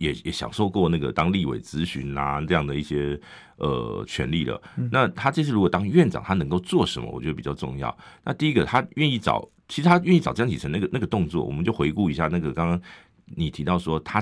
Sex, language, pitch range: male, Chinese, 80-130 Hz